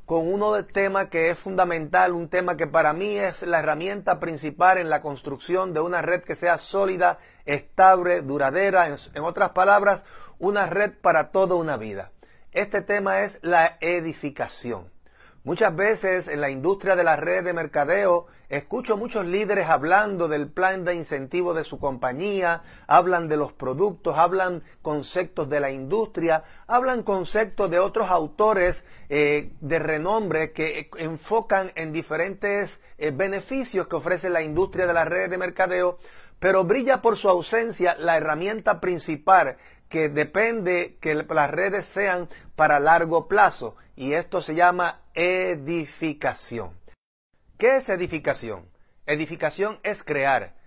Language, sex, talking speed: Spanish, male, 145 wpm